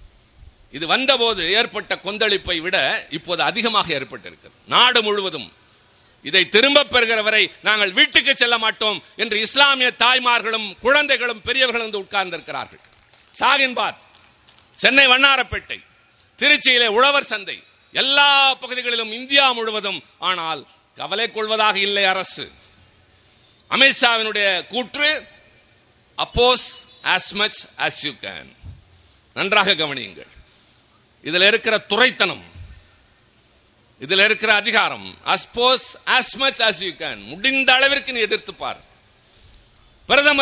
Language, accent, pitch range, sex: Tamil, native, 185-250 Hz, male